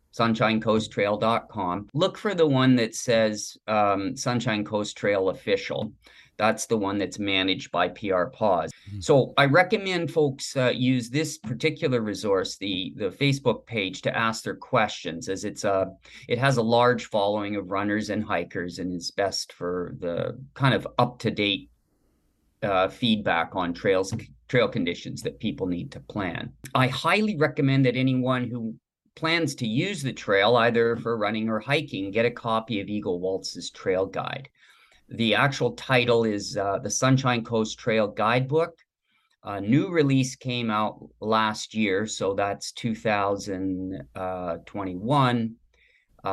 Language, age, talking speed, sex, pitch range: English, 40-59, 150 wpm, male, 100-130 Hz